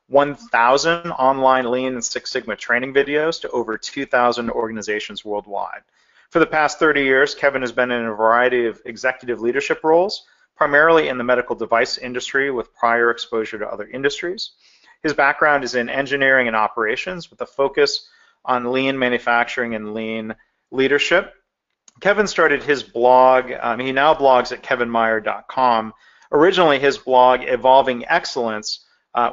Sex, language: male, English